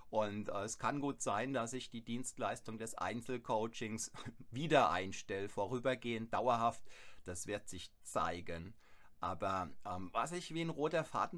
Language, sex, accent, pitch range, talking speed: German, male, German, 110-140 Hz, 150 wpm